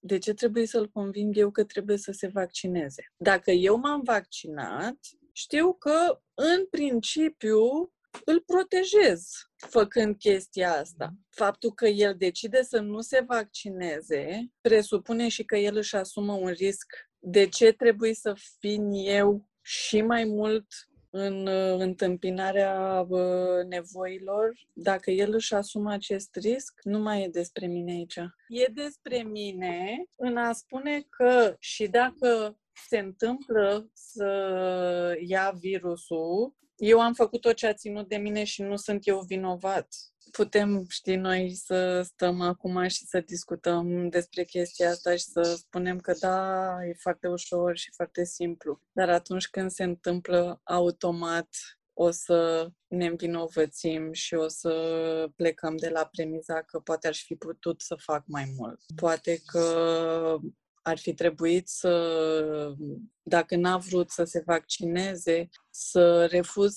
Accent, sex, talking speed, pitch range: native, female, 140 wpm, 175-215 Hz